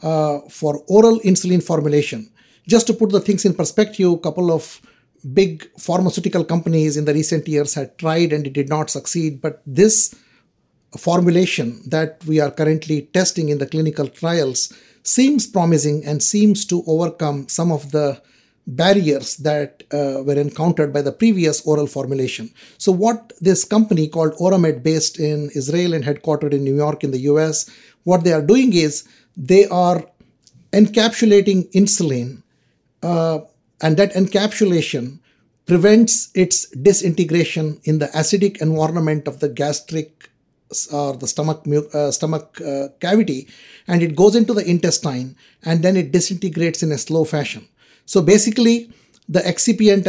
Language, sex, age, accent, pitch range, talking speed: English, male, 60-79, Indian, 150-190 Hz, 150 wpm